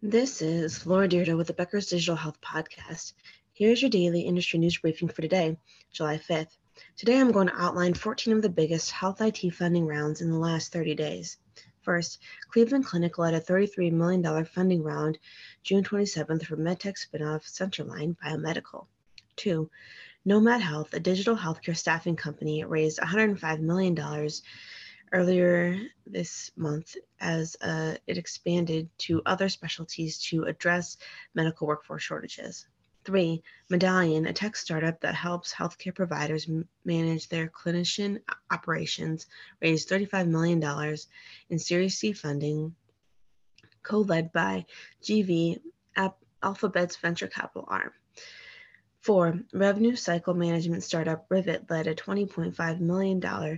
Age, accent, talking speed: 20-39, American, 130 wpm